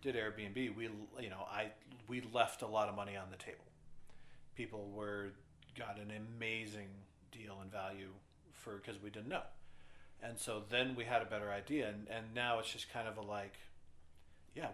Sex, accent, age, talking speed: male, American, 40-59, 185 wpm